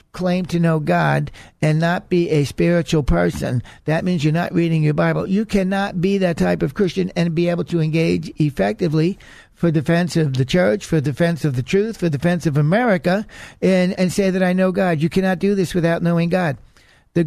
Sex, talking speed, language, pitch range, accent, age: male, 205 wpm, English, 155-185 Hz, American, 60-79